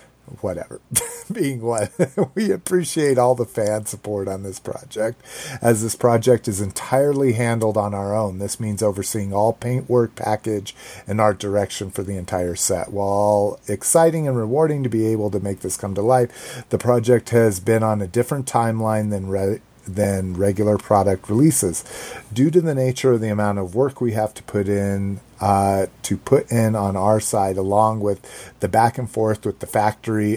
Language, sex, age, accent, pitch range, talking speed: English, male, 40-59, American, 100-125 Hz, 180 wpm